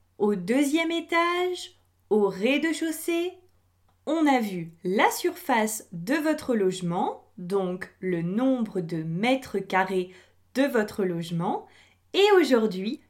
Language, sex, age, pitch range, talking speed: French, female, 20-39, 190-315 Hz, 110 wpm